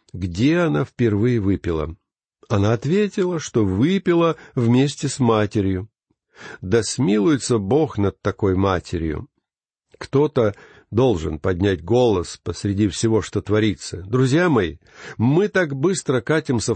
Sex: male